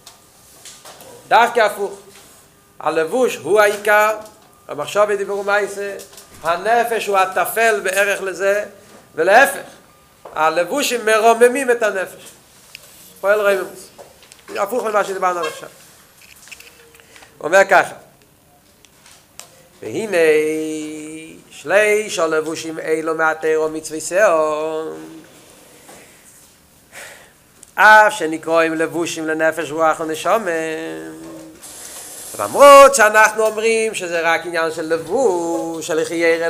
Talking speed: 85 wpm